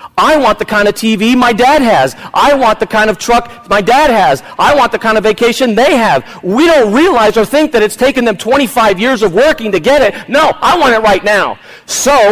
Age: 40-59